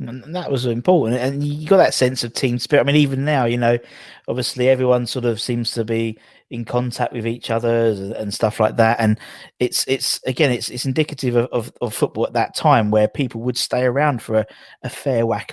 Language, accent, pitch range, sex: English, British, 110-130 Hz, male